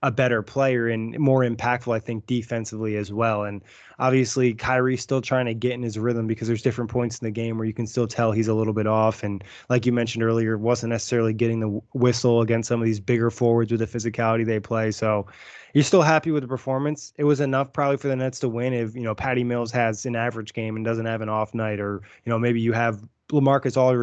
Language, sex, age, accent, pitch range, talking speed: English, male, 20-39, American, 115-130 Hz, 240 wpm